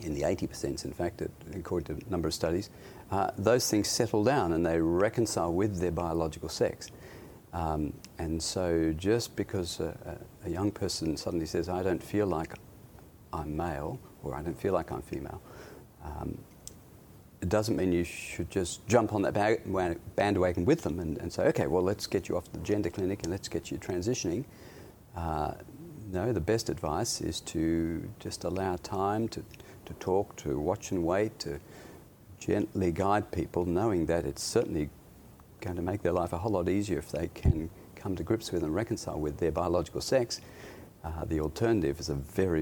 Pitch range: 80-105 Hz